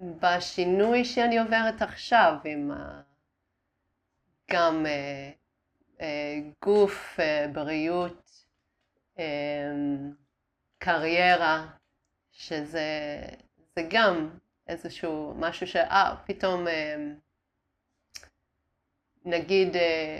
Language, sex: Hebrew, female